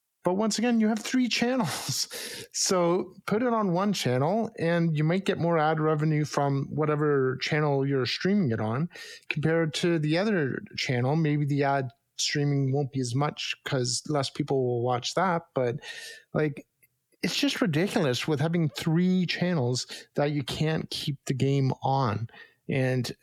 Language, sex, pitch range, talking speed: English, male, 135-175 Hz, 165 wpm